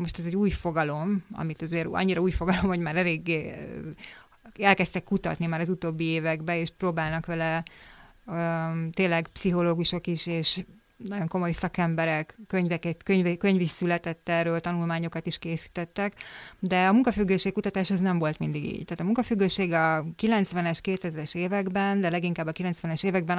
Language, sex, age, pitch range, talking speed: Hungarian, female, 30-49, 165-190 Hz, 150 wpm